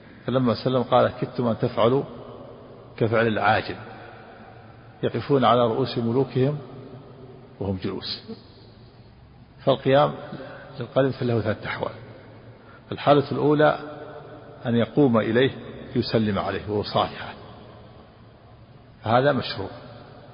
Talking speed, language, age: 90 wpm, Arabic, 50-69